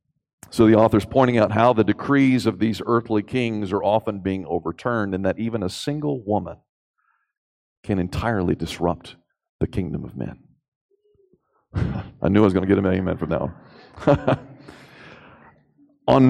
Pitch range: 95-125 Hz